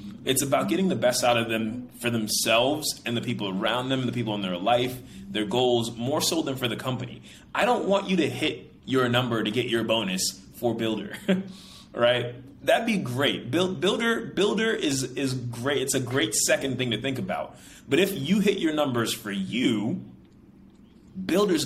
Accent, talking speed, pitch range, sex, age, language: American, 190 wpm, 110-135 Hz, male, 20-39, English